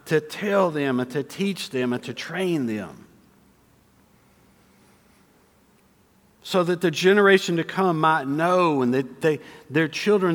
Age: 50-69